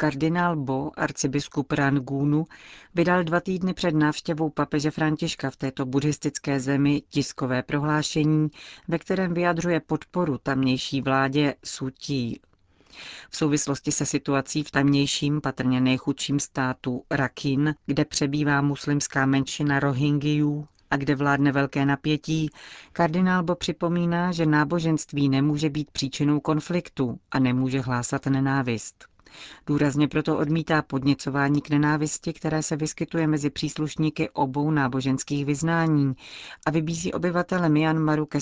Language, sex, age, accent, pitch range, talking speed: Czech, female, 40-59, native, 140-160 Hz, 120 wpm